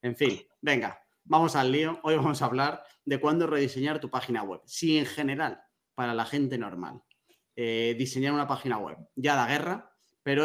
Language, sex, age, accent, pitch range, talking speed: Spanish, male, 30-49, Spanish, 115-150 Hz, 190 wpm